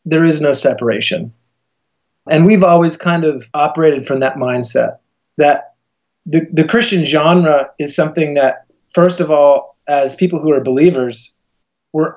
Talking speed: 150 wpm